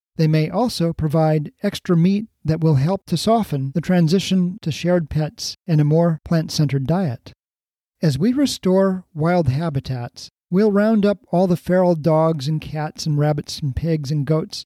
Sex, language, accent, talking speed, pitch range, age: male, English, American, 170 wpm, 155-190 Hz, 40-59